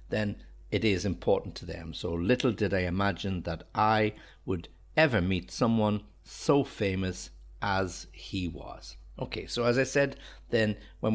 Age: 60-79